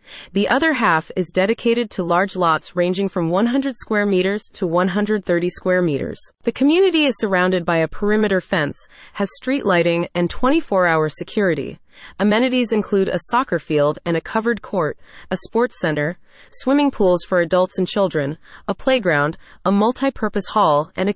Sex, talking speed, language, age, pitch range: female, 160 wpm, English, 30-49, 170-225 Hz